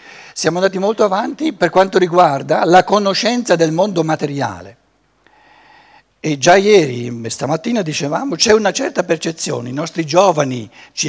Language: Italian